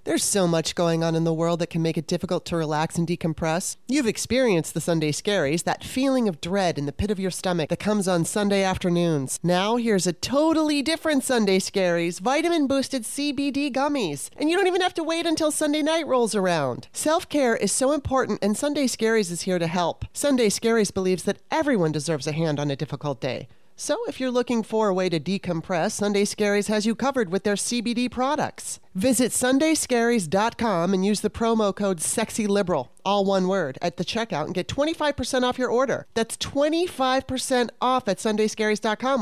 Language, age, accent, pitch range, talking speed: English, 30-49, American, 175-255 Hz, 190 wpm